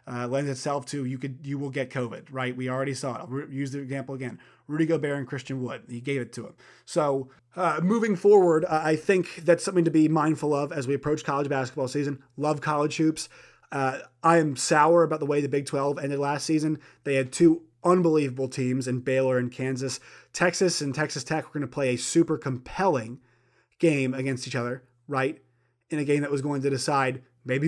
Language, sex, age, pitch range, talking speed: English, male, 30-49, 130-150 Hz, 215 wpm